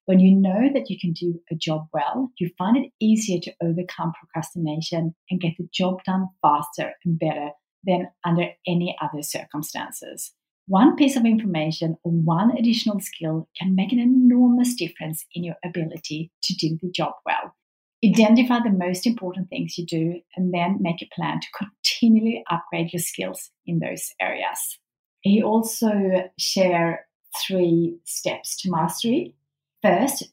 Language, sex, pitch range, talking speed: English, female, 170-215 Hz, 155 wpm